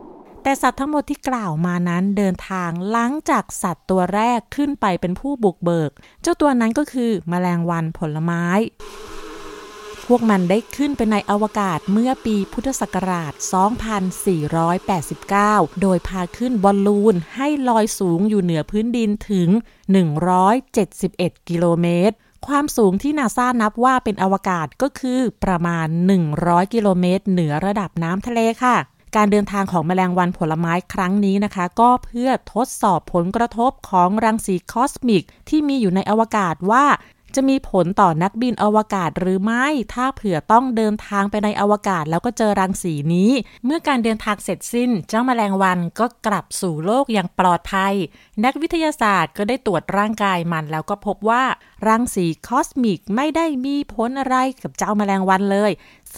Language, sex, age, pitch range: Thai, female, 30-49, 185-240 Hz